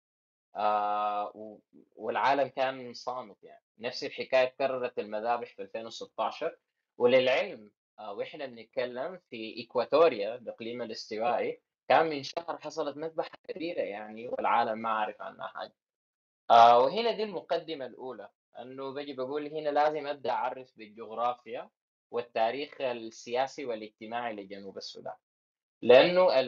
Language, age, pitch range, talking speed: Arabic, 20-39, 110-150 Hz, 115 wpm